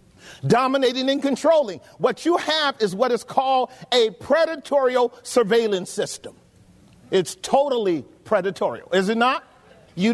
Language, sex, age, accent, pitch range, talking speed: English, male, 50-69, American, 215-275 Hz, 125 wpm